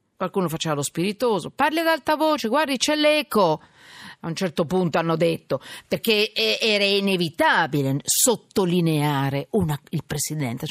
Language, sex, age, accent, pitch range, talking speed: Italian, female, 50-69, native, 165-275 Hz, 130 wpm